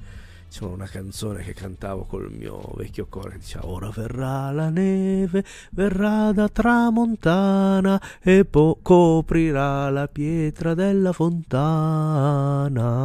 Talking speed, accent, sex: 100 wpm, native, male